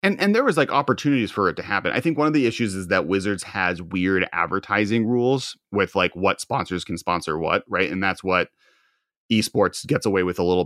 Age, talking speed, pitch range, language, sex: 30-49, 225 wpm, 90-120 Hz, English, male